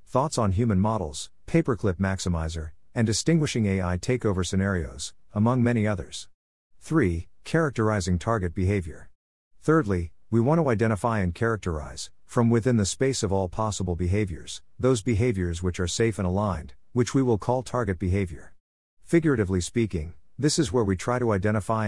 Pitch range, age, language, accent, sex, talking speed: 90-115 Hz, 50-69, English, American, male, 150 wpm